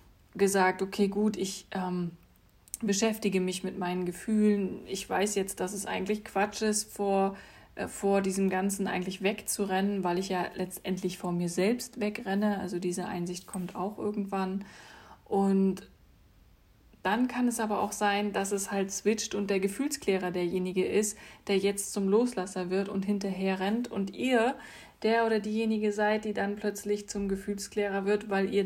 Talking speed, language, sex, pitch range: 160 wpm, German, female, 185-205 Hz